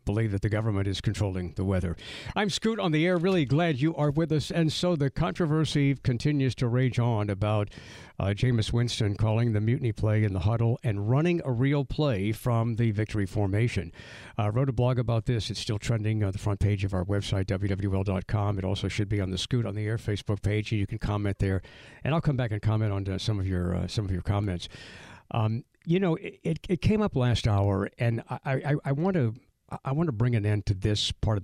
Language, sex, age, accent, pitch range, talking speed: English, male, 60-79, American, 100-130 Hz, 230 wpm